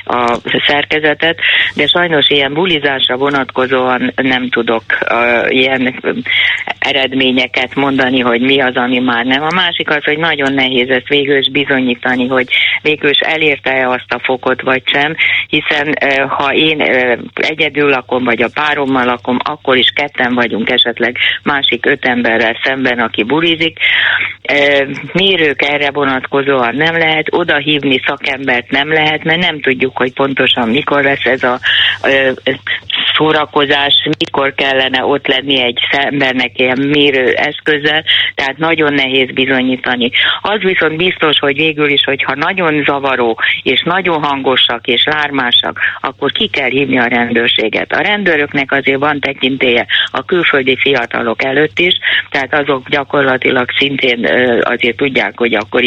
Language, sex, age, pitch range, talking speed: Hungarian, female, 30-49, 125-150 Hz, 145 wpm